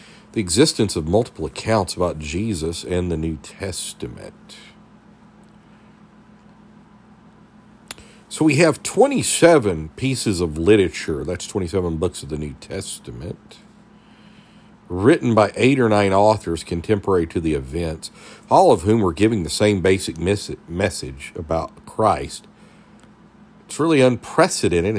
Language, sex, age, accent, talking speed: English, male, 50-69, American, 120 wpm